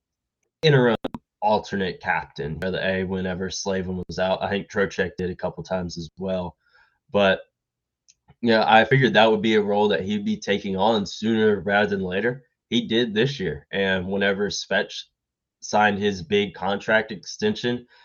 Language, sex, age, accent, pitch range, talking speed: English, male, 20-39, American, 95-120 Hz, 165 wpm